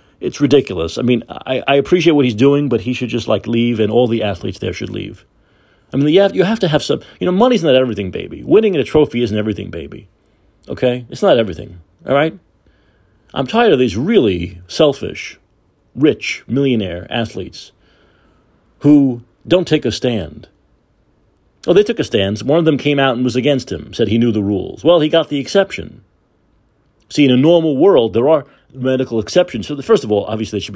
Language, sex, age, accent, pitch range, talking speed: English, male, 40-59, American, 105-155 Hz, 210 wpm